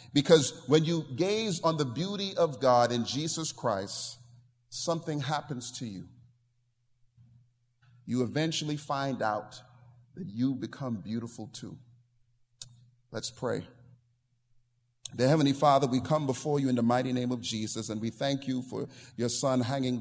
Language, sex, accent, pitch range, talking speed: English, male, American, 120-140 Hz, 140 wpm